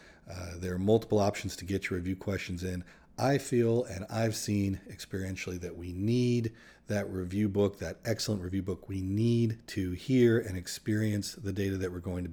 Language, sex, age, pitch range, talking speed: English, male, 40-59, 90-115 Hz, 190 wpm